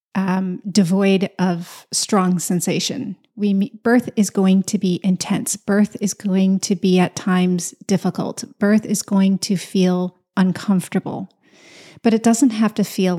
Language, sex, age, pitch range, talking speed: English, female, 30-49, 180-210 Hz, 150 wpm